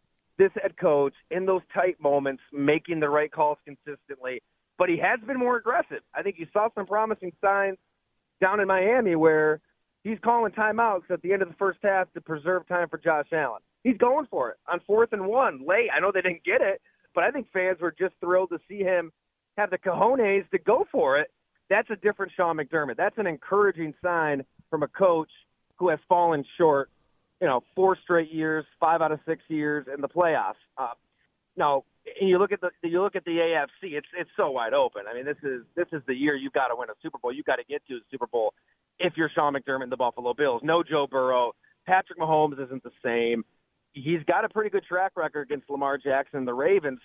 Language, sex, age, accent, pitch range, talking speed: English, male, 30-49, American, 150-195 Hz, 225 wpm